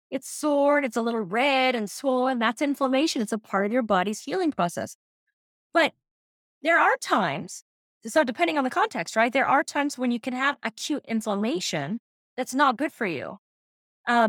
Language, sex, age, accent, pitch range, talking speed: English, female, 30-49, American, 220-290 Hz, 185 wpm